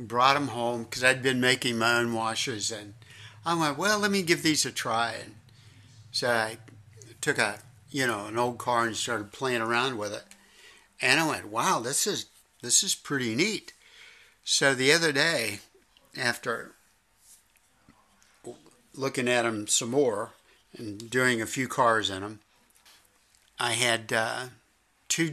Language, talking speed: English, 155 wpm